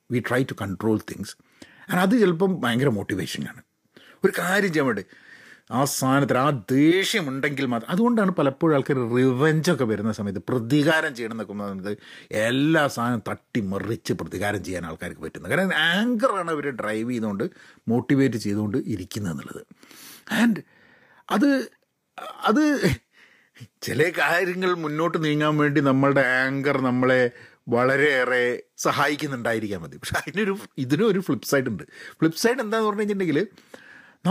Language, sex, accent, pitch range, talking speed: Malayalam, male, native, 125-190 Hz, 120 wpm